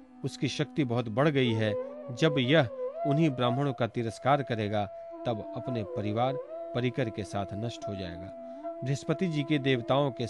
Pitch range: 115-165 Hz